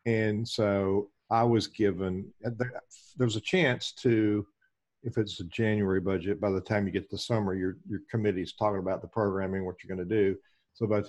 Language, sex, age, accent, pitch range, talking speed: English, male, 50-69, American, 100-120 Hz, 205 wpm